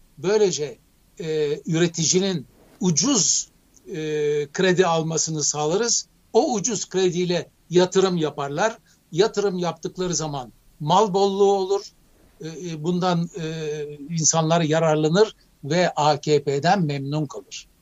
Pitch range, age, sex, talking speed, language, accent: 155-195 Hz, 60-79, male, 95 wpm, Turkish, native